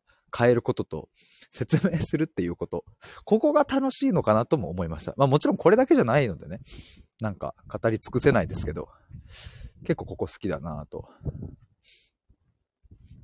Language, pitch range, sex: Japanese, 90-145 Hz, male